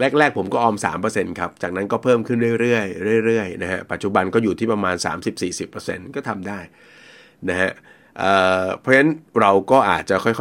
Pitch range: 95-120 Hz